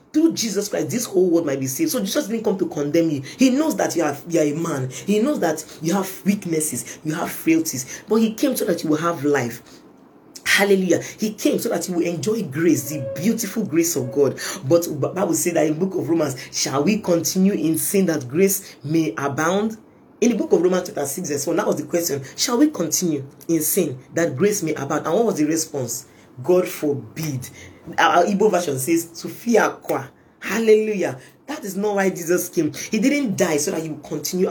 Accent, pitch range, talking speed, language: Nigerian, 150-200 Hz, 215 wpm, English